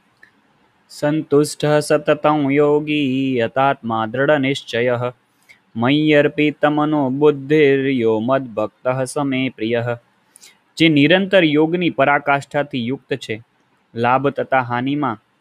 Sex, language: male, Gujarati